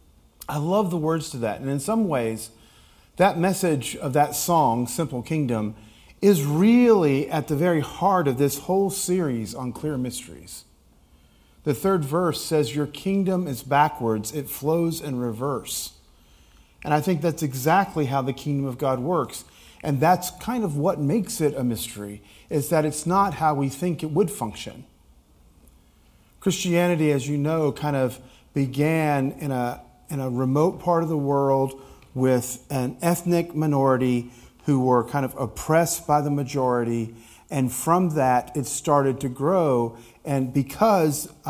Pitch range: 125-165 Hz